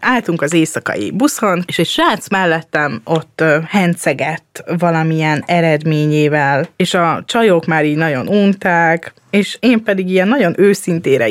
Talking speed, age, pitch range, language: 135 wpm, 20-39, 160-205 Hz, Hungarian